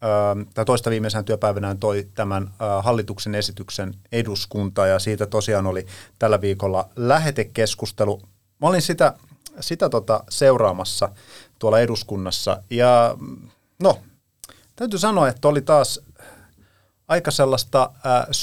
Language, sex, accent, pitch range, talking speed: Finnish, male, native, 105-140 Hz, 110 wpm